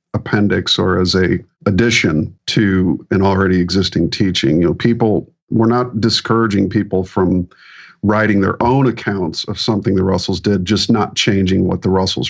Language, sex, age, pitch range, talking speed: English, male, 50-69, 95-115 Hz, 160 wpm